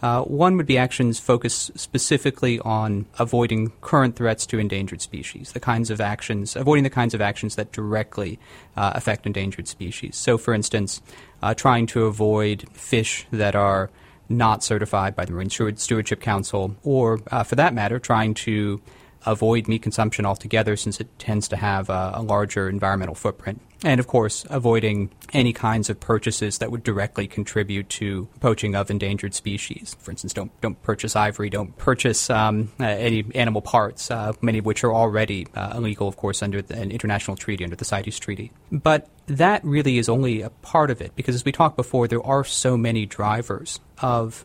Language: English